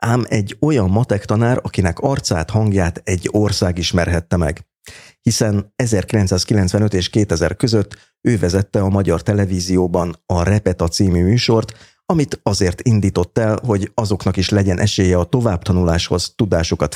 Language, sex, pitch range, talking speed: Hungarian, male, 90-110 Hz, 135 wpm